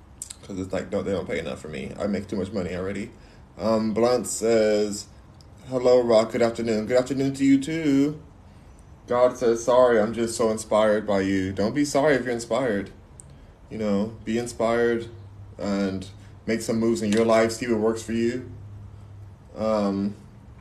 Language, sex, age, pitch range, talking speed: English, male, 20-39, 105-130 Hz, 175 wpm